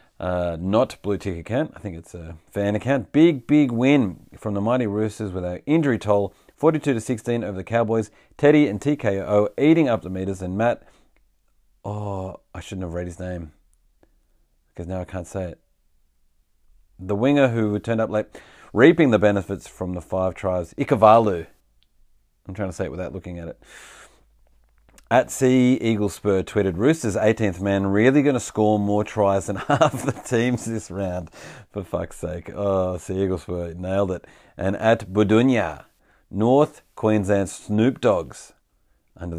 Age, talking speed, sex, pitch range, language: 30-49, 165 wpm, male, 90-115 Hz, English